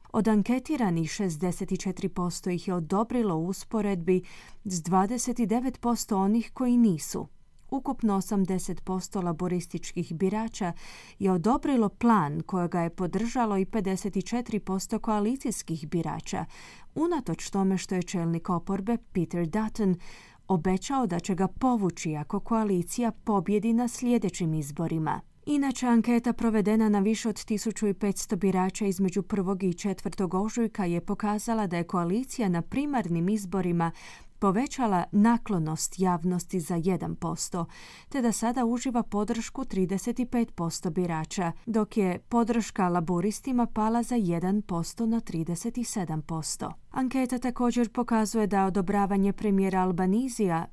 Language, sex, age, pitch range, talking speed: Croatian, female, 30-49, 180-230 Hz, 110 wpm